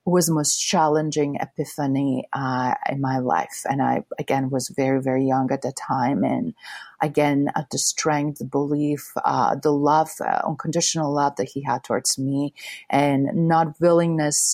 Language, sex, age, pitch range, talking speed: English, female, 30-49, 140-165 Hz, 165 wpm